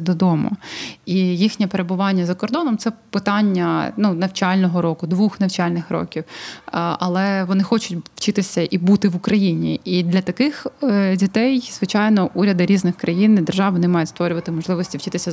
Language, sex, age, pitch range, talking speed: Ukrainian, female, 20-39, 175-205 Hz, 150 wpm